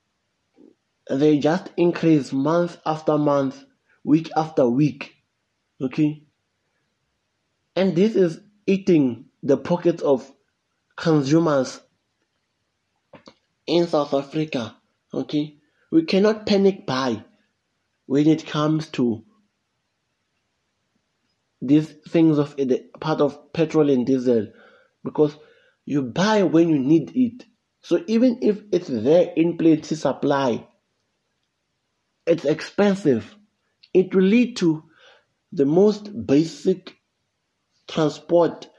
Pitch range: 140-175 Hz